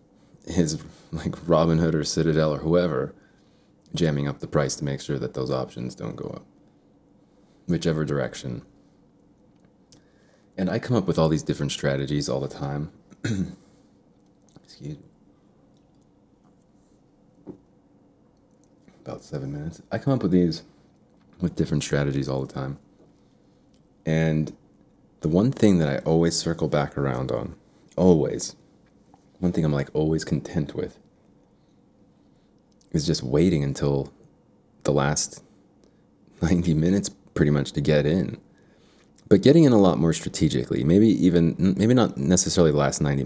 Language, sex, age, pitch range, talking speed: English, male, 30-49, 70-90 Hz, 135 wpm